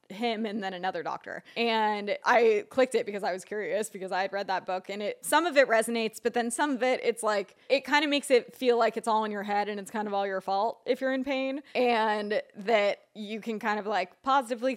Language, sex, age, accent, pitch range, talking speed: English, female, 20-39, American, 205-250 Hz, 255 wpm